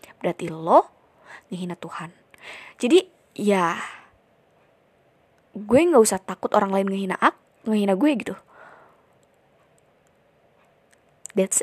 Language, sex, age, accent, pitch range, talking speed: Indonesian, female, 20-39, native, 180-215 Hz, 95 wpm